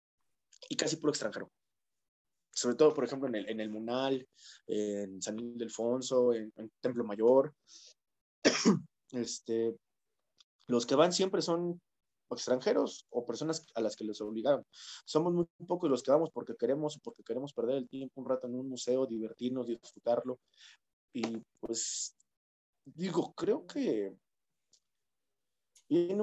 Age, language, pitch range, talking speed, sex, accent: 20-39, Spanish, 115-160 Hz, 140 wpm, male, Mexican